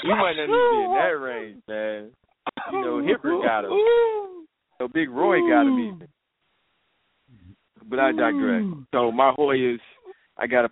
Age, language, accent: 20-39, English, American